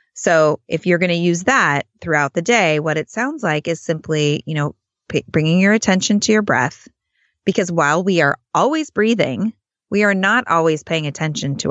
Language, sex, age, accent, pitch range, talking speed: English, female, 20-39, American, 155-205 Hz, 185 wpm